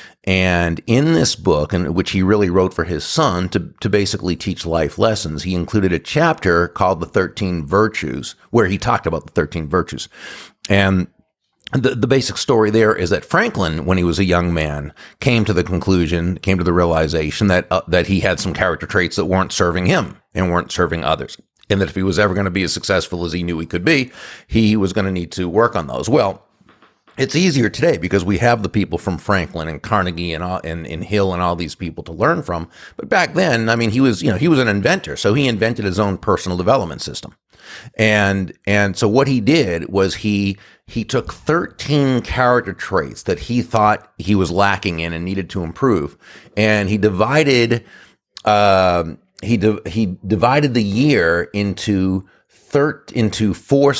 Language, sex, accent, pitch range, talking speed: English, male, American, 90-110 Hz, 200 wpm